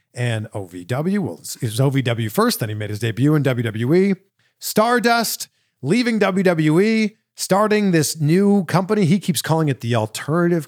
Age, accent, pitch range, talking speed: 40-59, American, 120-180 Hz, 150 wpm